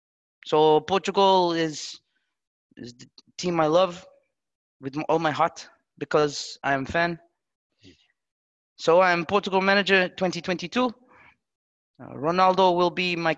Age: 30-49